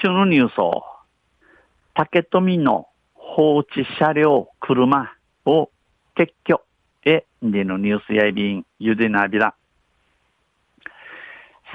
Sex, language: male, Japanese